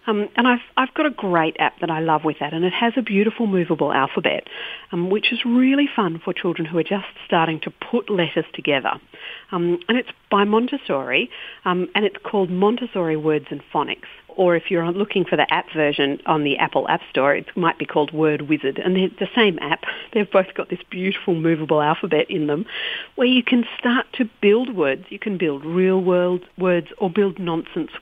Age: 50-69